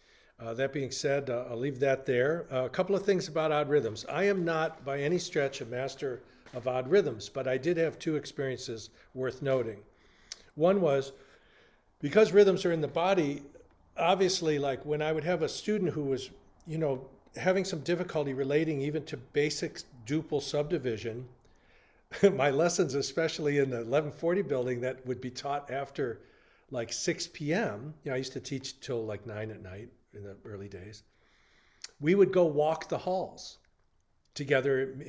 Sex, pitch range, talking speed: male, 125-160 Hz, 175 wpm